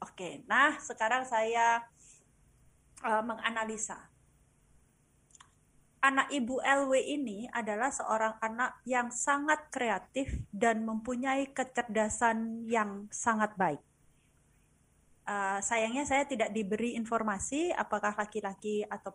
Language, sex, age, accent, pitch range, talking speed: Indonesian, female, 30-49, native, 220-265 Hz, 100 wpm